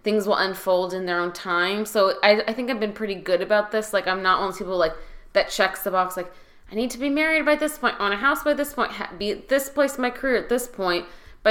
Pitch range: 185-220 Hz